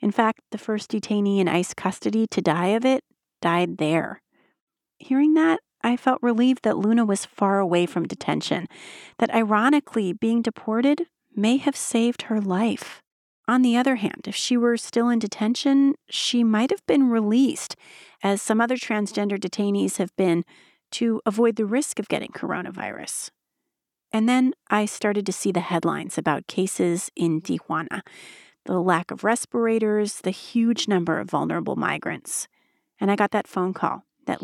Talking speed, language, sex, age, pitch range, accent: 160 wpm, English, female, 30-49, 190-240 Hz, American